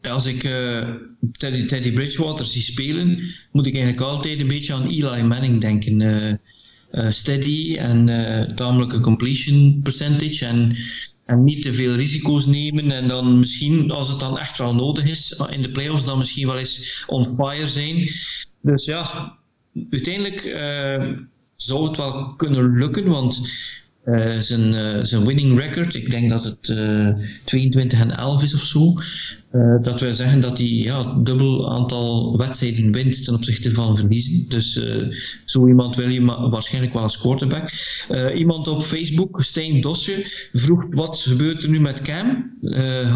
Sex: male